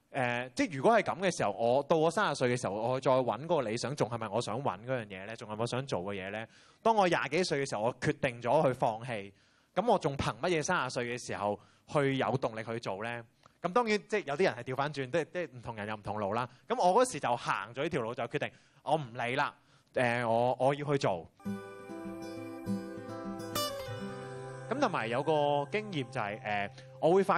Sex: male